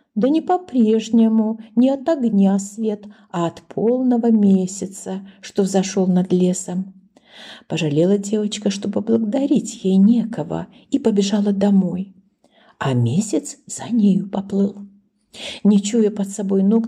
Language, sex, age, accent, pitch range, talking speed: Ukrainian, female, 50-69, native, 195-235 Hz, 120 wpm